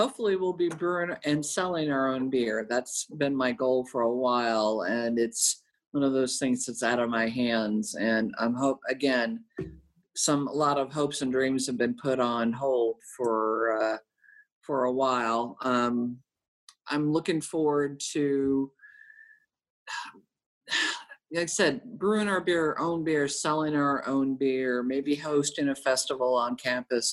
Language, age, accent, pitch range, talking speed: English, 50-69, American, 125-155 Hz, 155 wpm